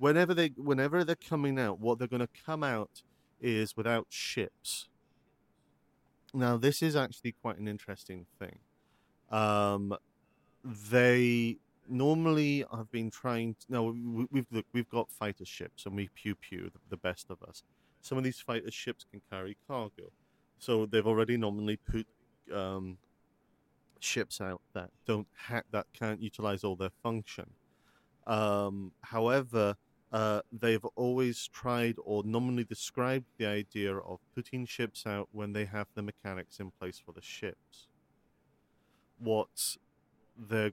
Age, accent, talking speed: 40-59, British, 140 wpm